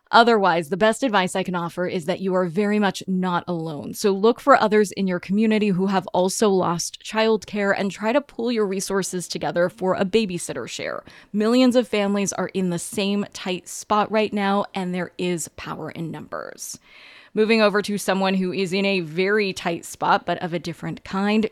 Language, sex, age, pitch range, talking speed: English, female, 20-39, 180-225 Hz, 200 wpm